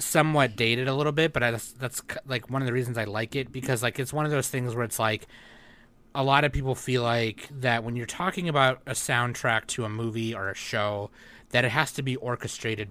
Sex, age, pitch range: male, 30-49, 115-135 Hz